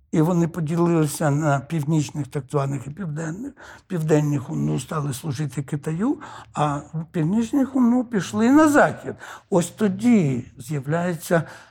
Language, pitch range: Ukrainian, 145-185 Hz